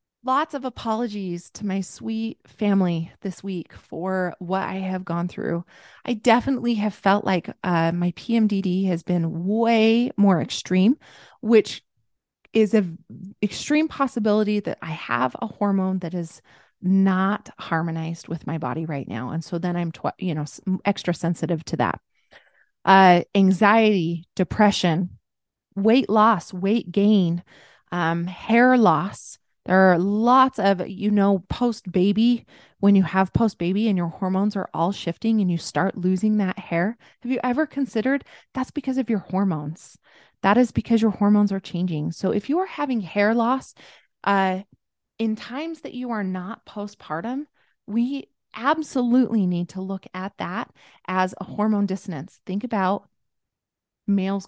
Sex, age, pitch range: female, 20-39, 180-225 Hz